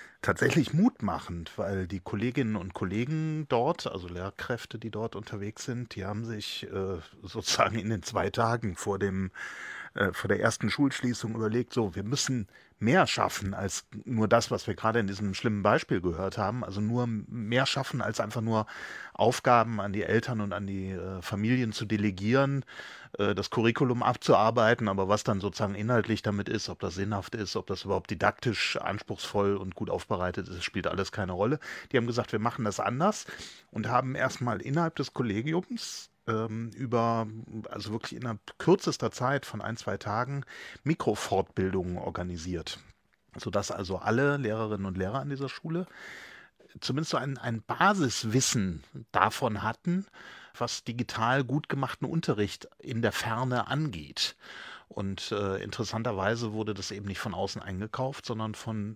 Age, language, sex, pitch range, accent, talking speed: 40-59, German, male, 100-125 Hz, German, 155 wpm